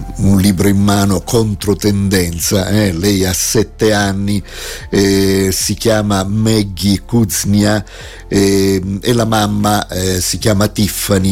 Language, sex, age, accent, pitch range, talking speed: Italian, male, 50-69, native, 95-110 Hz, 125 wpm